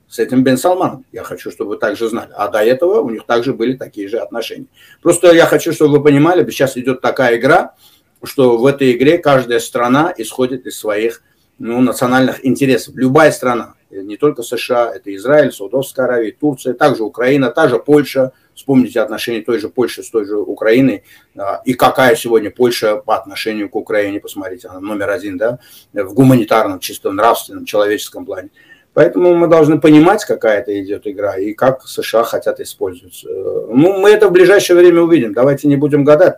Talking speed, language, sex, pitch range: 180 wpm, Ukrainian, male, 120-175 Hz